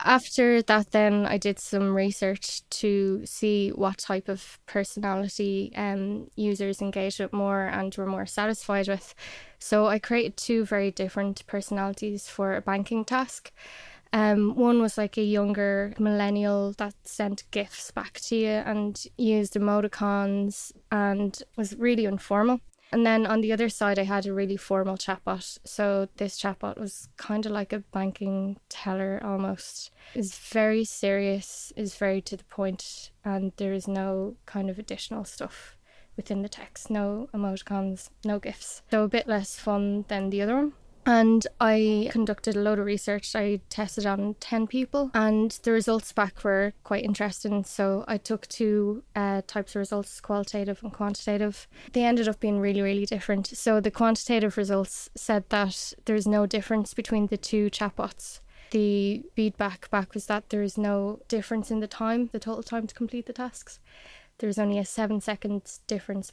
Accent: Irish